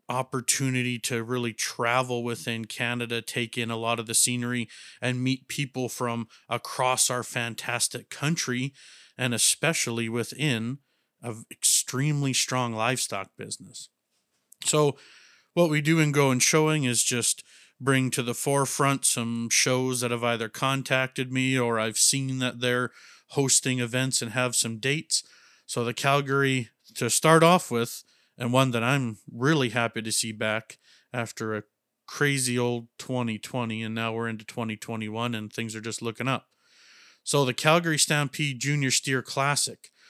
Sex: male